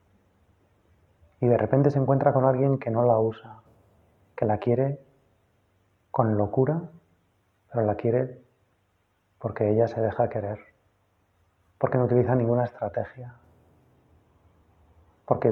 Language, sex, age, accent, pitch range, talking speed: Spanish, male, 30-49, Spanish, 100-115 Hz, 115 wpm